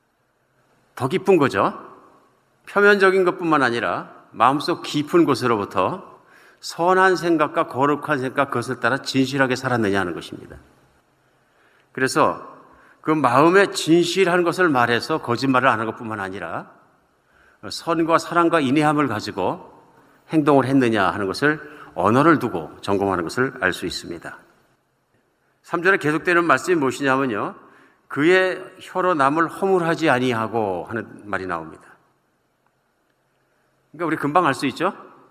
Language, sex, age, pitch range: Korean, male, 50-69, 125-175 Hz